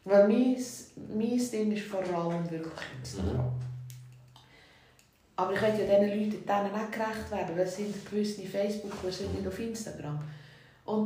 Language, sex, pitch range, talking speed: German, female, 190-240 Hz, 150 wpm